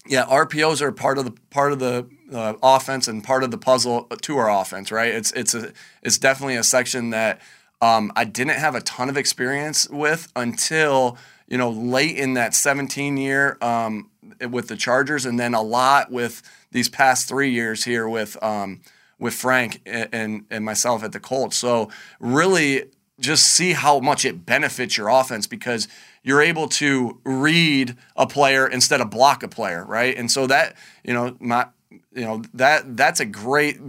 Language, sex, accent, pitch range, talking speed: English, male, American, 120-140 Hz, 185 wpm